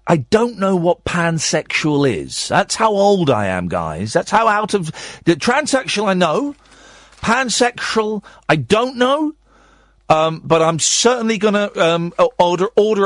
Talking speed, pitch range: 145 wpm, 145-210 Hz